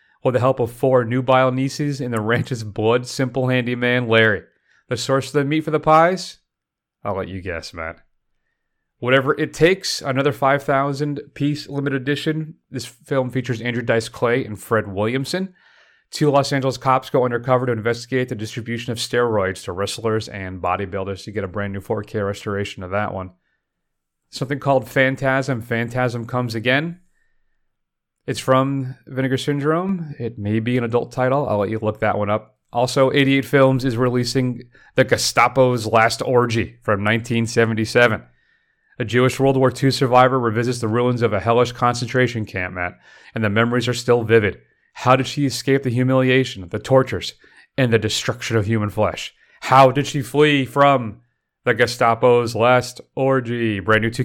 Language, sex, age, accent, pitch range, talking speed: English, male, 30-49, American, 110-135 Hz, 165 wpm